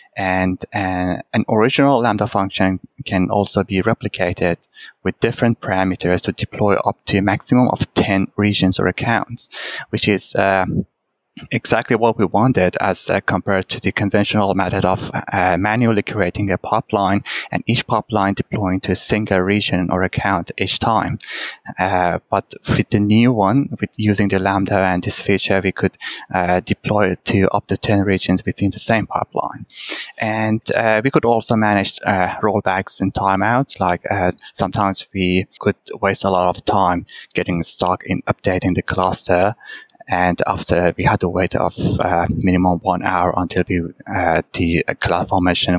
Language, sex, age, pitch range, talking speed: English, male, 20-39, 95-110 Hz, 165 wpm